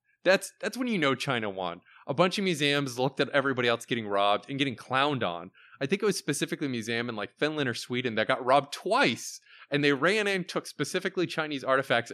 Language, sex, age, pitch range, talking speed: English, male, 20-39, 110-145 Hz, 220 wpm